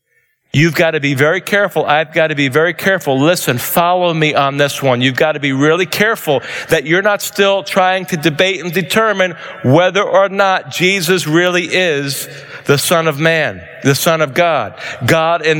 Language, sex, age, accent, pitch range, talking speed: English, male, 40-59, American, 170-230 Hz, 190 wpm